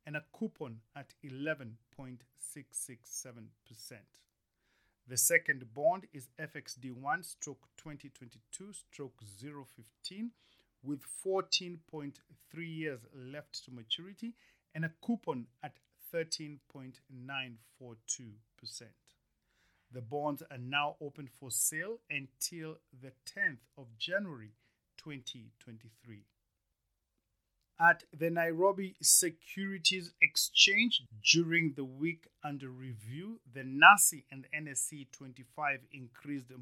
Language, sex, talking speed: English, male, 80 wpm